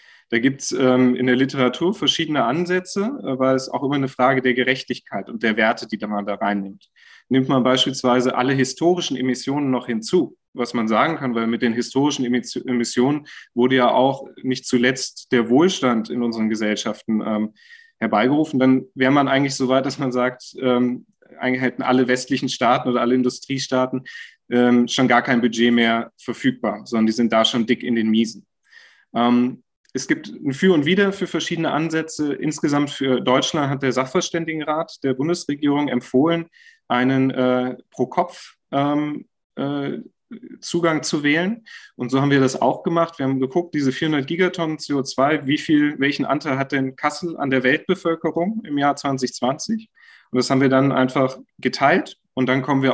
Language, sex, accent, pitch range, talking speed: German, male, German, 125-145 Hz, 165 wpm